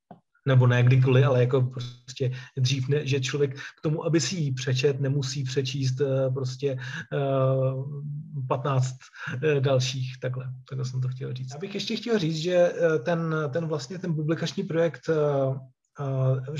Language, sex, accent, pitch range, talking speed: Czech, male, native, 135-160 Hz, 150 wpm